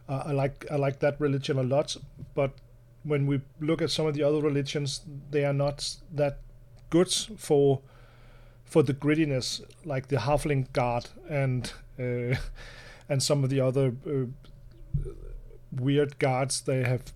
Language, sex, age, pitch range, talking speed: Danish, male, 40-59, 125-145 Hz, 155 wpm